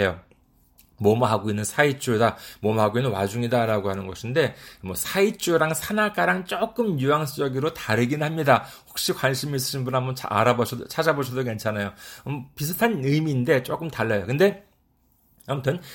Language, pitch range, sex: Korean, 110-170 Hz, male